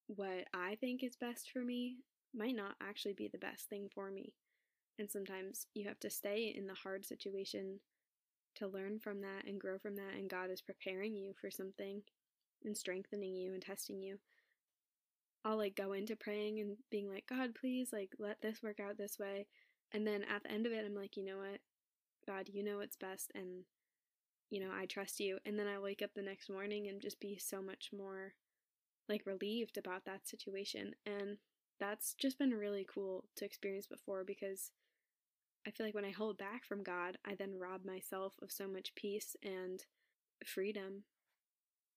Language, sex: English, female